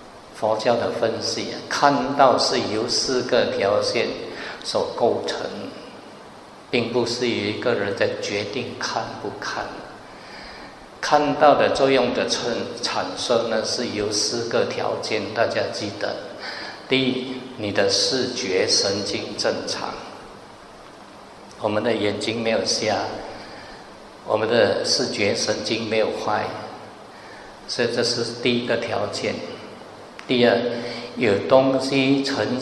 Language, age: Chinese, 50-69